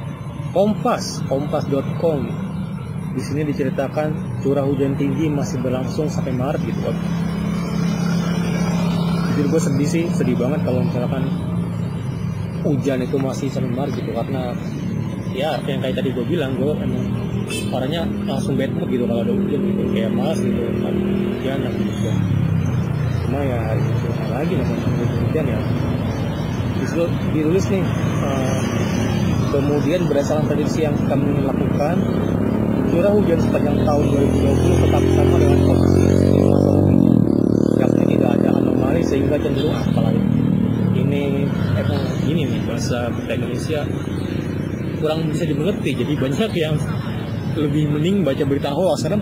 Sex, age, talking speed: male, 30-49, 125 wpm